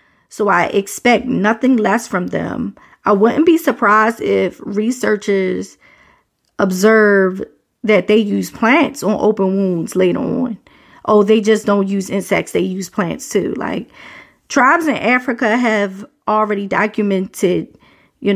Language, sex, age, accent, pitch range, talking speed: English, female, 40-59, American, 200-245 Hz, 135 wpm